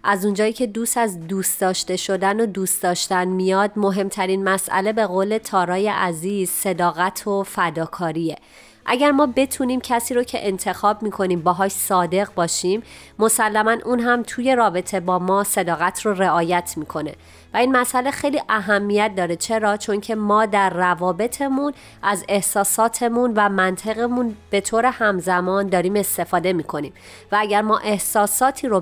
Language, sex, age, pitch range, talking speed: Persian, female, 30-49, 185-235 Hz, 150 wpm